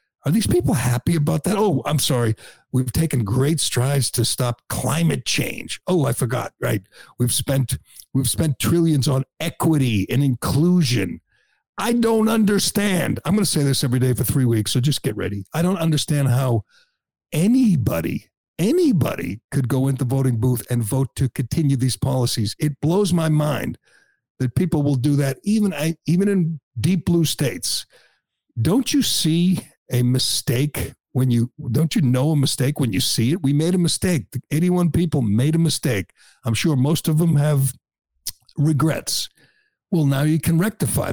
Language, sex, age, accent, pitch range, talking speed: English, male, 60-79, American, 125-160 Hz, 170 wpm